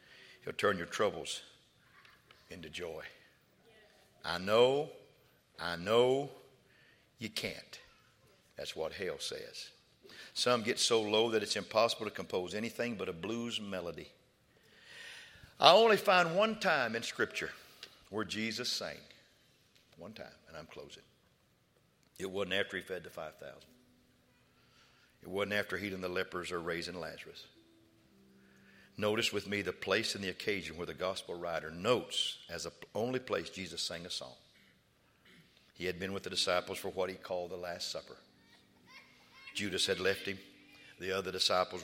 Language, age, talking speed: English, 60-79, 145 wpm